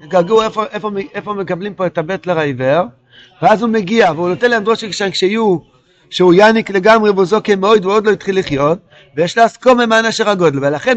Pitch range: 155-210 Hz